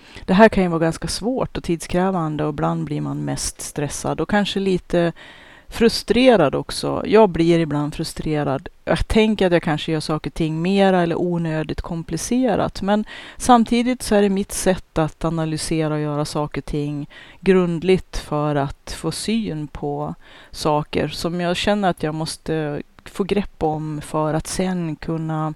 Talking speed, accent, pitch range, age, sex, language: 165 wpm, native, 150-190 Hz, 30-49, female, Swedish